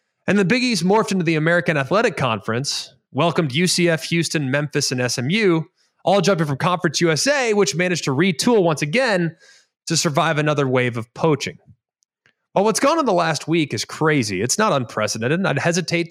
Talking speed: 175 wpm